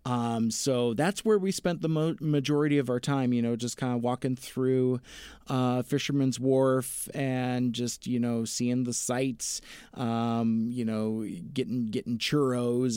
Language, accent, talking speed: English, American, 155 wpm